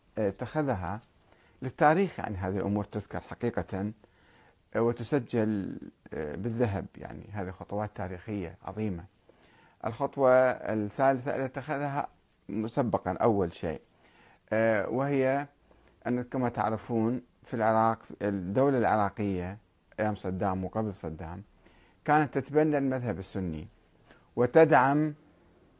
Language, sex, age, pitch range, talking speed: Arabic, male, 50-69, 100-140 Hz, 85 wpm